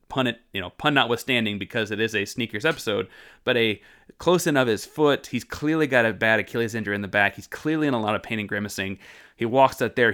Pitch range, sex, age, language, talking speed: 105-140 Hz, male, 30-49, English, 250 wpm